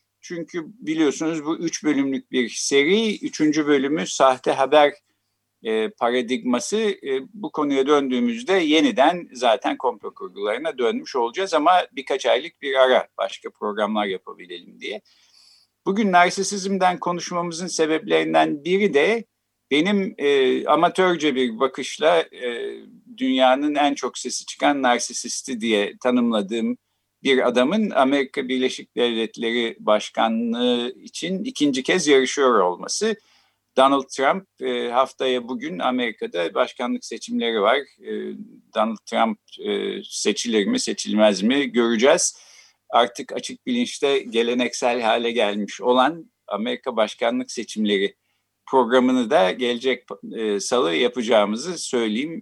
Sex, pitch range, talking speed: male, 115-195 Hz, 110 wpm